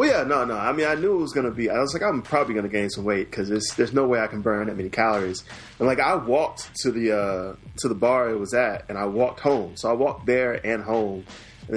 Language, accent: English, American